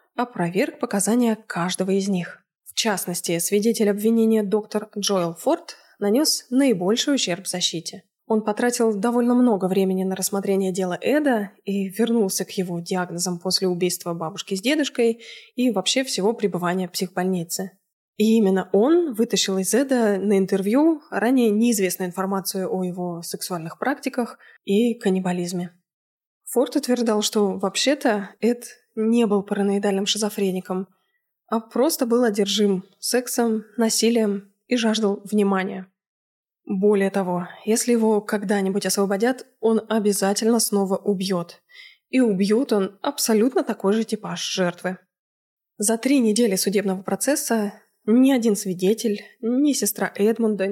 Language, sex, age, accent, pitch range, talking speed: Russian, female, 20-39, native, 190-235 Hz, 125 wpm